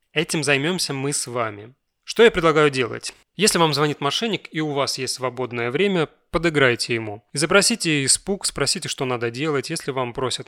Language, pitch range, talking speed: Russian, 125-160 Hz, 170 wpm